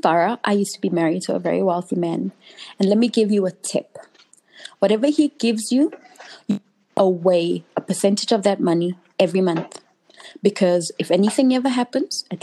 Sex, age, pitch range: female, 20-39, 190-235 Hz